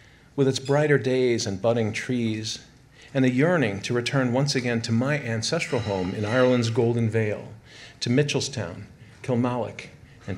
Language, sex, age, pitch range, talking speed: English, male, 50-69, 115-140 Hz, 150 wpm